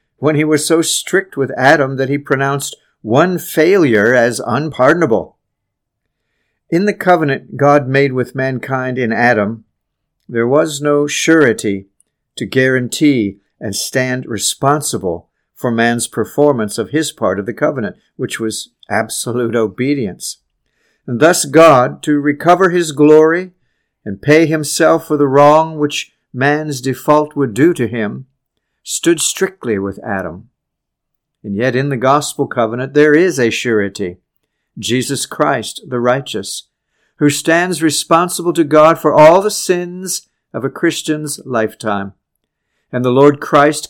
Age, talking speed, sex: 60-79, 135 wpm, male